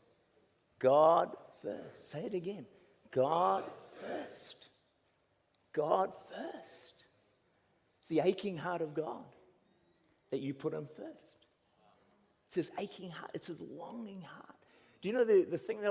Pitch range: 140-230 Hz